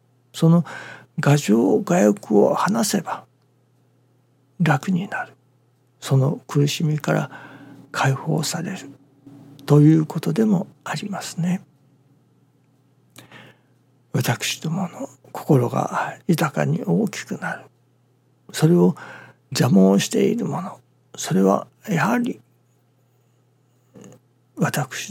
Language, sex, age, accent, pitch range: Japanese, male, 60-79, native, 125-160 Hz